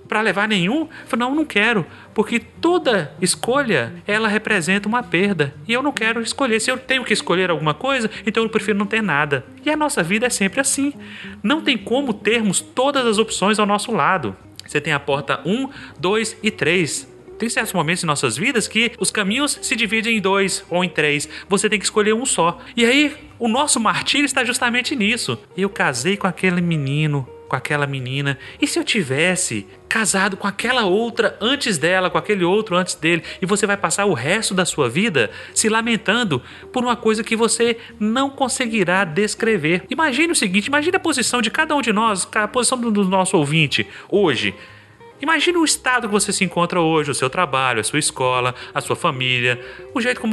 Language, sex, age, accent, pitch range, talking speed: Portuguese, male, 30-49, Brazilian, 170-240 Hz, 200 wpm